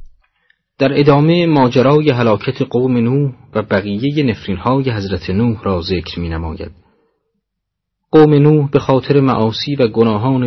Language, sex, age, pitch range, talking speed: Persian, male, 40-59, 100-130 Hz, 130 wpm